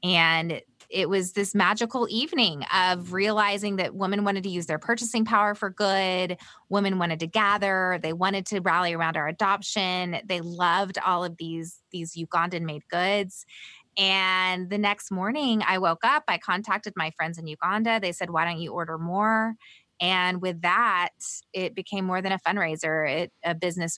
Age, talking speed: 20-39, 175 wpm